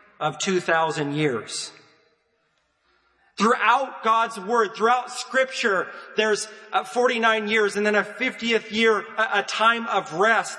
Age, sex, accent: 40-59, male, American